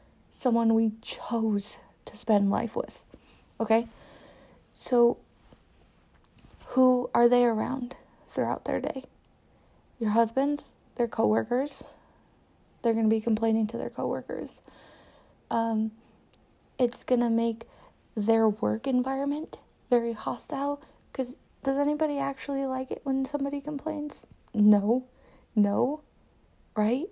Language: English